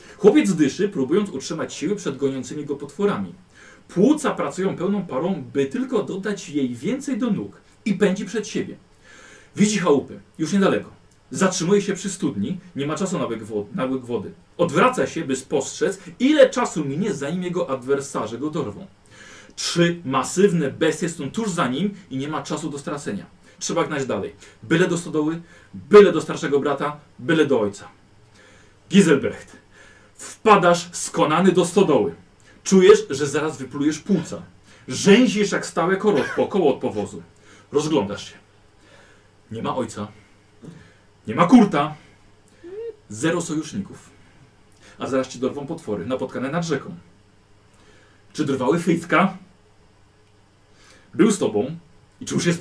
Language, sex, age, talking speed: Polish, male, 40-59, 140 wpm